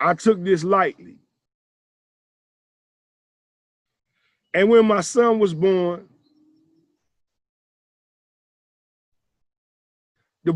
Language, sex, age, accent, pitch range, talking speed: English, male, 40-59, American, 165-210 Hz, 65 wpm